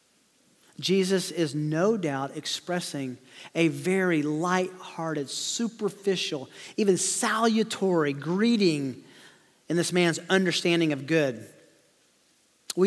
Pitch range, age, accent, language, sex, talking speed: 160-205 Hz, 40-59, American, English, male, 90 wpm